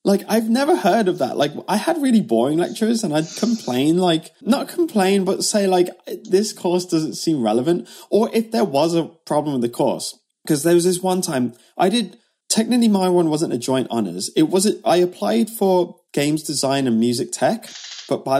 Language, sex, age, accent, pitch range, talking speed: English, male, 20-39, British, 125-190 Hz, 200 wpm